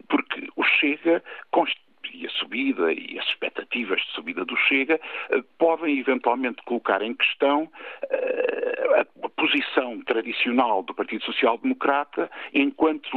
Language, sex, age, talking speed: Portuguese, male, 50-69, 115 wpm